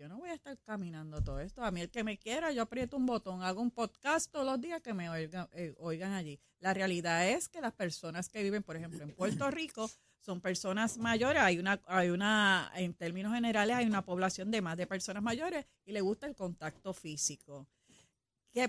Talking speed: 220 wpm